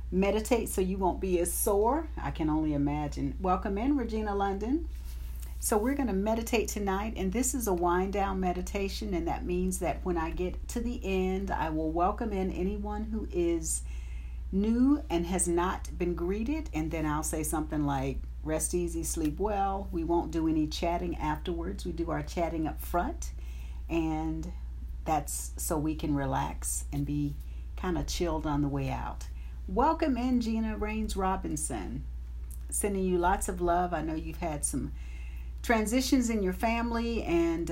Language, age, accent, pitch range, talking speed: English, 50-69, American, 135-190 Hz, 170 wpm